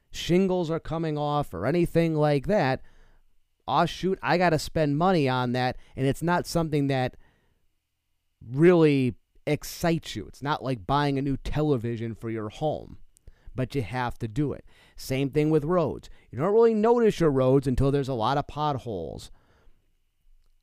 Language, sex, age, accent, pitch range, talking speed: English, male, 30-49, American, 110-155 Hz, 165 wpm